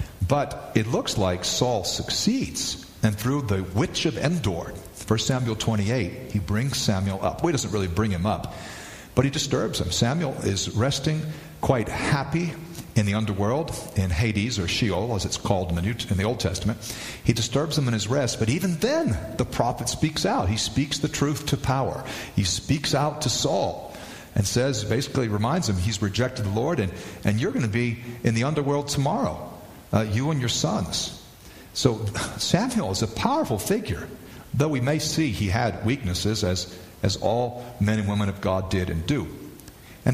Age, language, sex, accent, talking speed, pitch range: 40-59, English, male, American, 185 wpm, 100-130 Hz